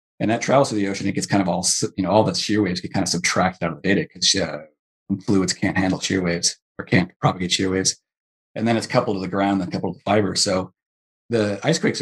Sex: male